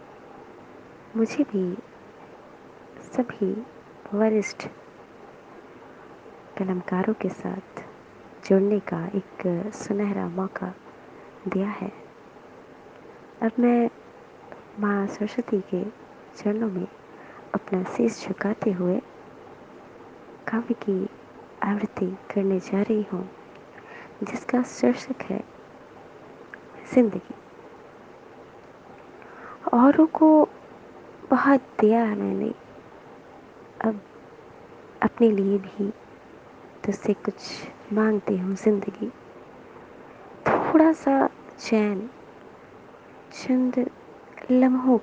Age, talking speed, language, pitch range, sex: 20-39, 75 wpm, Hindi, 195-245 Hz, female